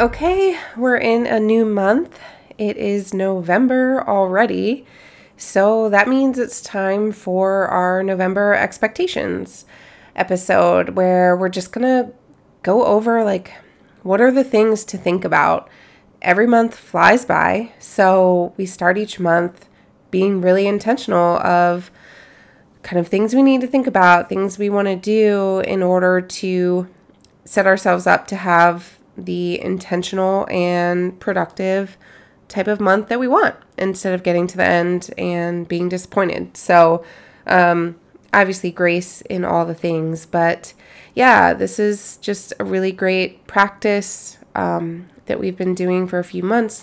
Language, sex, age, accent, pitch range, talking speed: English, female, 20-39, American, 180-210 Hz, 145 wpm